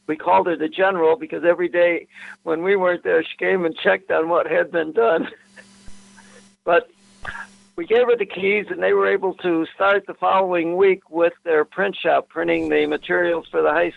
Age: 60-79